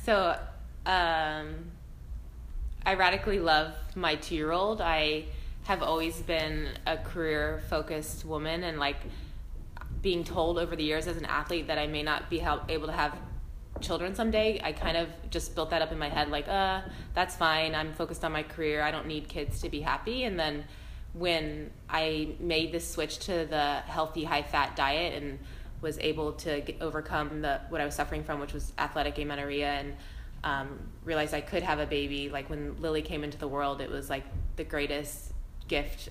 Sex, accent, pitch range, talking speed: female, American, 145-160 Hz, 180 wpm